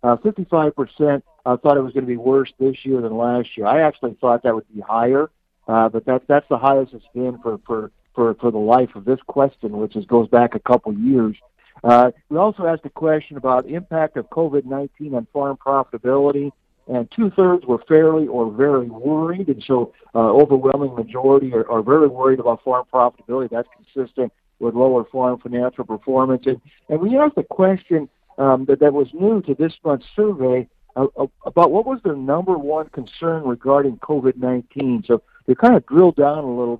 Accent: American